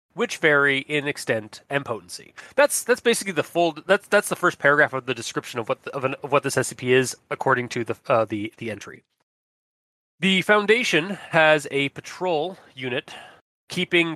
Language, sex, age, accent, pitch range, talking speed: English, male, 20-39, American, 125-160 Hz, 180 wpm